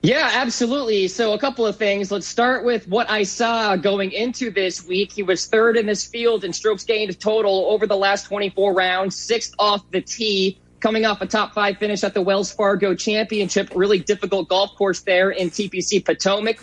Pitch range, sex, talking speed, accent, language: 195-230 Hz, male, 200 wpm, American, English